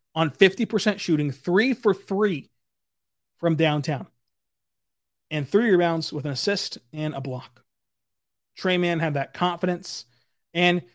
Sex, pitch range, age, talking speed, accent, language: male, 145-185 Hz, 30-49, 125 wpm, American, English